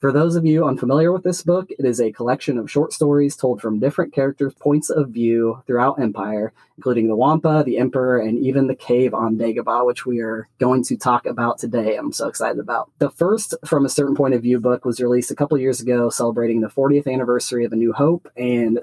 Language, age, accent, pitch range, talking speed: English, 20-39, American, 120-145 Hz, 225 wpm